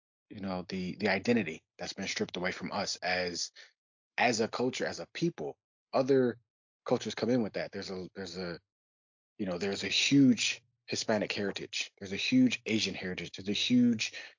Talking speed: 180 wpm